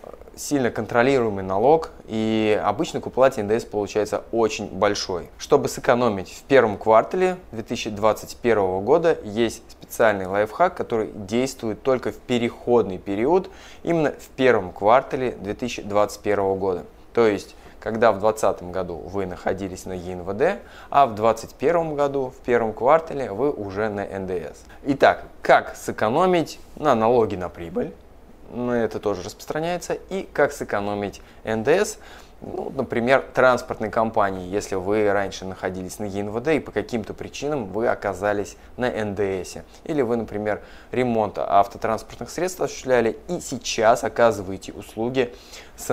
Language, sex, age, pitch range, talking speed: Russian, male, 20-39, 100-120 Hz, 130 wpm